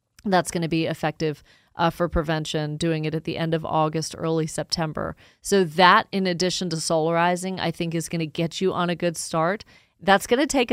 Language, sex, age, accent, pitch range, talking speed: English, female, 30-49, American, 160-190 Hz, 215 wpm